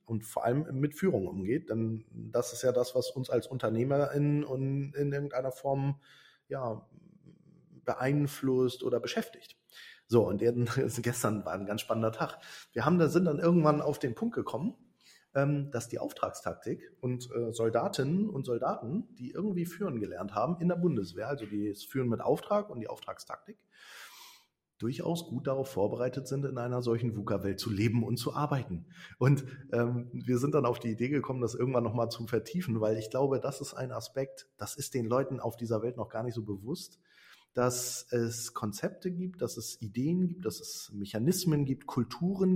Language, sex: German, male